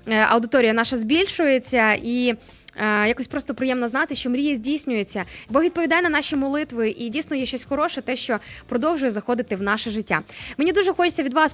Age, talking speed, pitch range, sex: 20-39, 170 wpm, 230-285 Hz, female